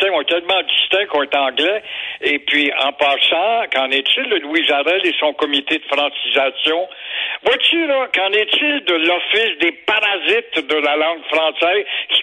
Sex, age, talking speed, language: male, 60-79, 150 wpm, French